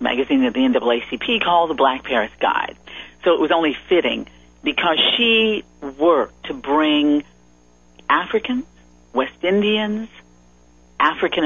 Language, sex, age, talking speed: English, female, 50-69, 120 wpm